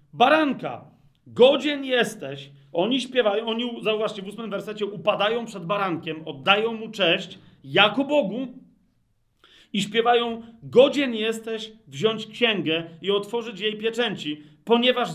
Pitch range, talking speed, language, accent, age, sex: 175-230 Hz, 115 wpm, Polish, native, 40-59, male